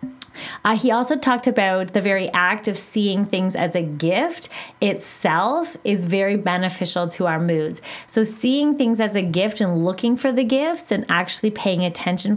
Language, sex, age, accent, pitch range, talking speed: English, female, 20-39, American, 175-210 Hz, 175 wpm